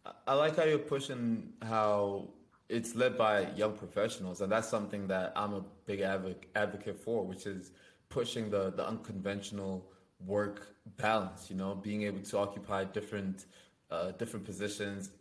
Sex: male